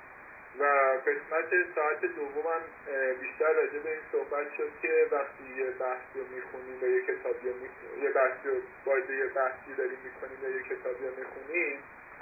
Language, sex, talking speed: Persian, male, 140 wpm